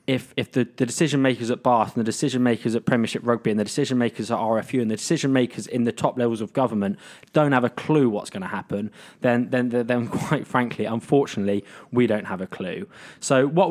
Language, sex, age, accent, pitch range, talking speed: English, male, 20-39, British, 115-140 Hz, 230 wpm